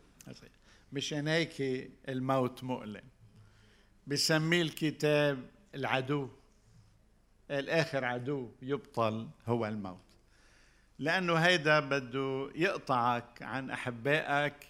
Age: 50-69